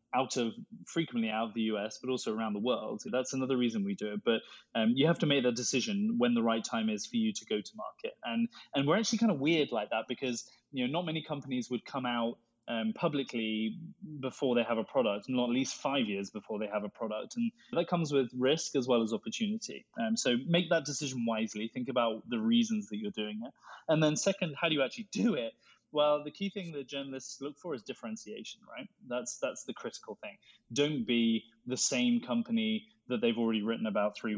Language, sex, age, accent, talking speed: English, male, 20-39, British, 230 wpm